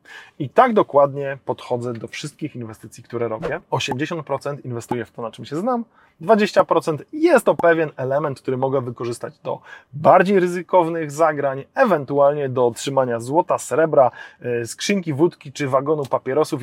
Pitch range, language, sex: 125-170 Hz, Polish, male